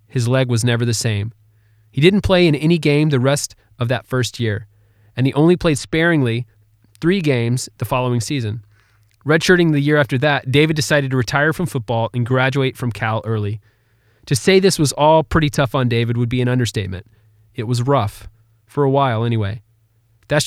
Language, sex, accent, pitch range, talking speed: English, male, American, 110-150 Hz, 190 wpm